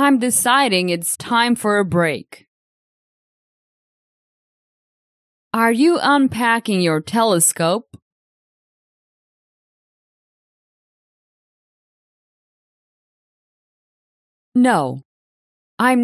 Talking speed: 50 wpm